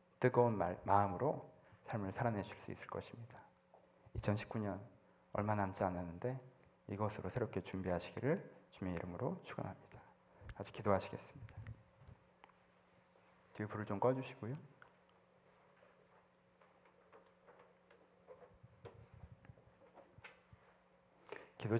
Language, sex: Korean, male